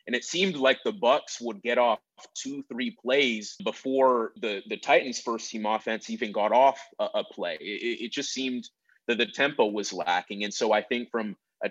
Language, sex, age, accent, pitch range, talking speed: English, male, 30-49, American, 110-125 Hz, 200 wpm